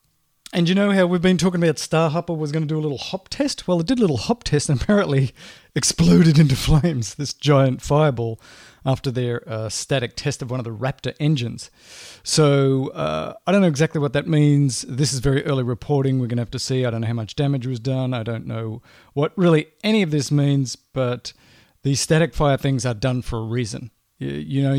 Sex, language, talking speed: male, English, 225 wpm